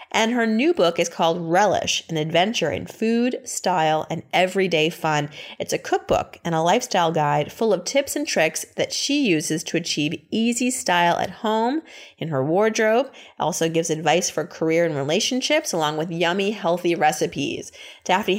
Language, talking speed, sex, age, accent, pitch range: English, 170 wpm, female, 30-49, American, 160-225 Hz